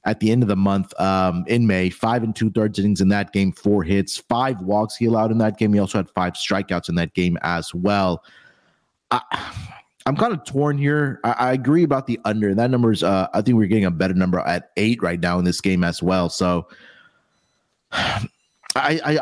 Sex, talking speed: male, 210 wpm